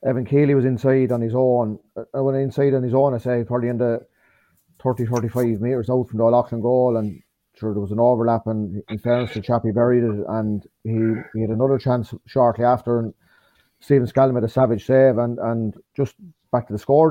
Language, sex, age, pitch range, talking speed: English, male, 30-49, 115-135 Hz, 220 wpm